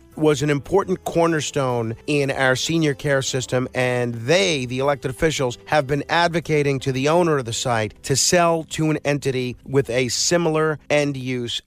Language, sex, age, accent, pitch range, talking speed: English, male, 50-69, American, 130-165 Hz, 170 wpm